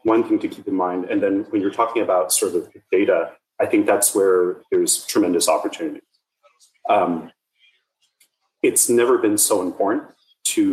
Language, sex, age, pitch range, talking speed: English, male, 30-49, 320-415 Hz, 160 wpm